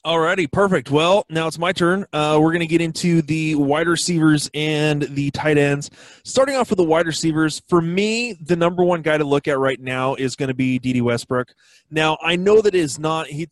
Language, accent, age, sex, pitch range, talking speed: English, American, 20-39, male, 135-165 Hz, 220 wpm